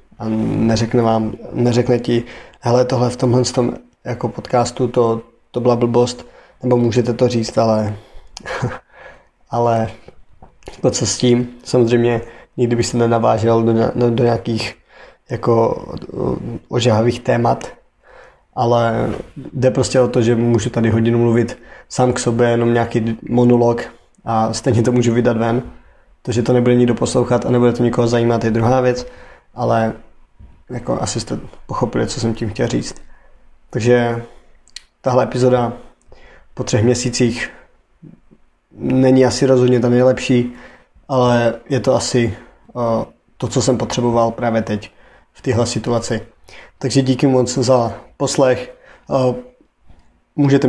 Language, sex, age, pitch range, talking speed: Czech, male, 20-39, 115-125 Hz, 135 wpm